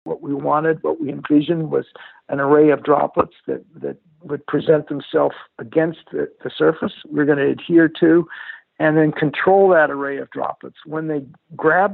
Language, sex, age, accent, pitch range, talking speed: English, male, 60-79, American, 140-165 Hz, 175 wpm